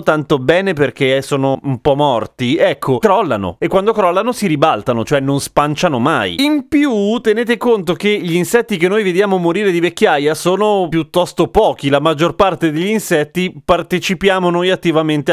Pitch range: 135-195 Hz